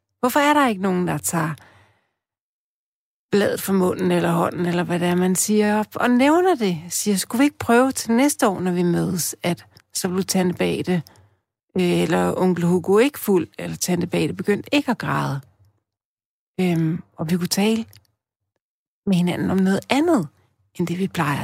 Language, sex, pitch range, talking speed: Danish, female, 145-205 Hz, 180 wpm